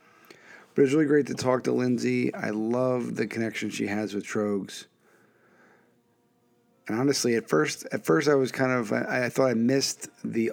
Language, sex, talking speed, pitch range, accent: English, male, 180 wpm, 100-130 Hz, American